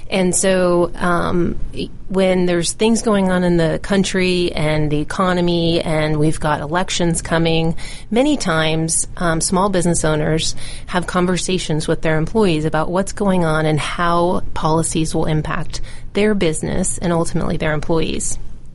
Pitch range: 160-185 Hz